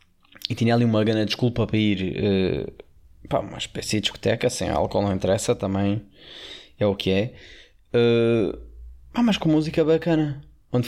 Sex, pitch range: male, 95-125 Hz